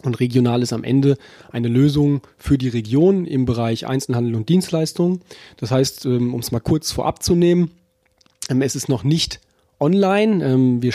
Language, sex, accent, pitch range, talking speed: German, male, German, 130-180 Hz, 165 wpm